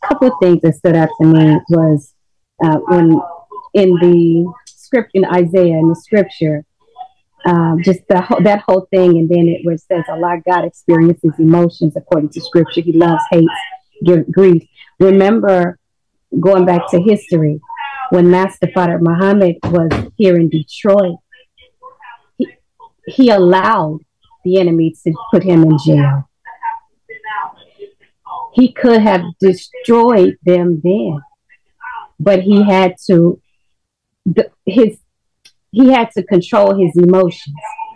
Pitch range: 165-205 Hz